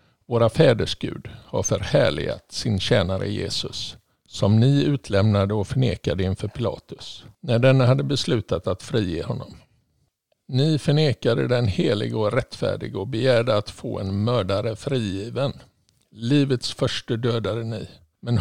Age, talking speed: 50-69, 125 wpm